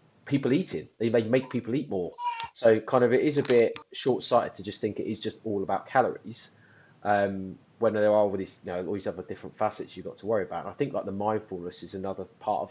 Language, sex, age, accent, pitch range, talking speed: English, male, 20-39, British, 95-125 Hz, 250 wpm